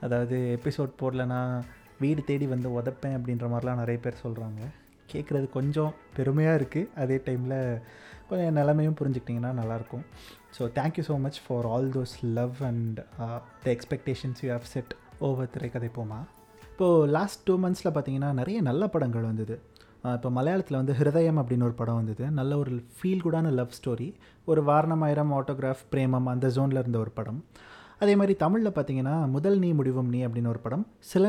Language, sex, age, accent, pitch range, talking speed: Tamil, male, 30-49, native, 125-175 Hz, 155 wpm